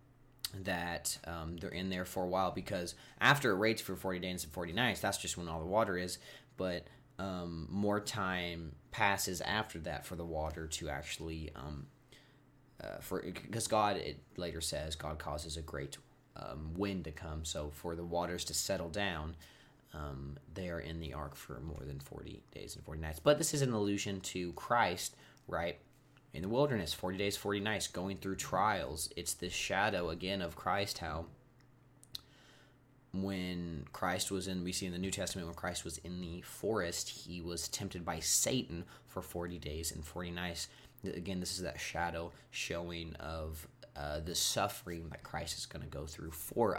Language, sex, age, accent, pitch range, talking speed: English, male, 30-49, American, 80-95 Hz, 185 wpm